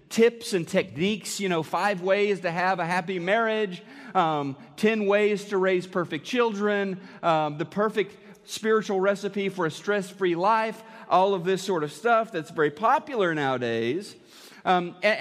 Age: 40-59